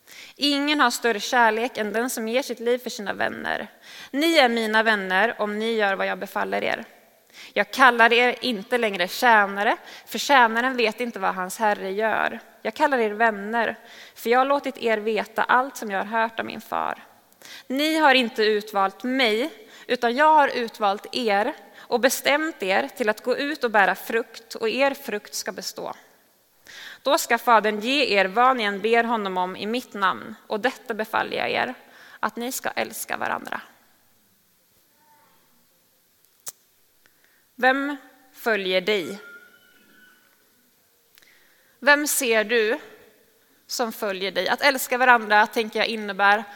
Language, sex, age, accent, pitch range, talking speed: Swedish, female, 20-39, native, 215-265 Hz, 155 wpm